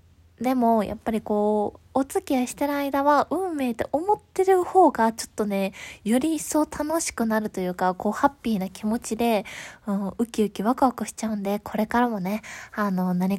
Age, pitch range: 20-39, 205-275 Hz